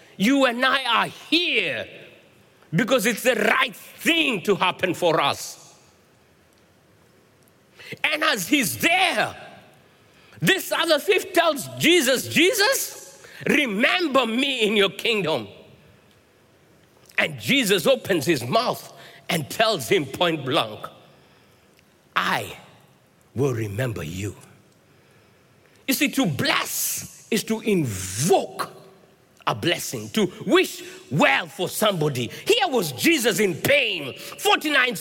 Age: 60-79